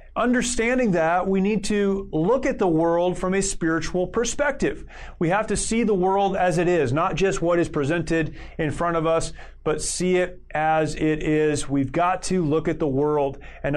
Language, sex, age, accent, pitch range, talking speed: English, male, 30-49, American, 145-180 Hz, 195 wpm